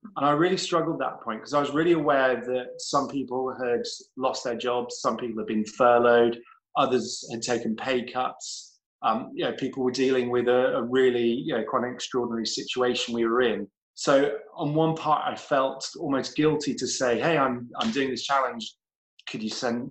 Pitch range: 115-140 Hz